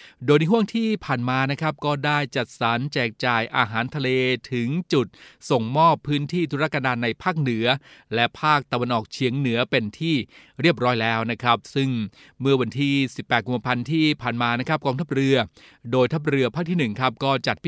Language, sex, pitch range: Thai, male, 120-140 Hz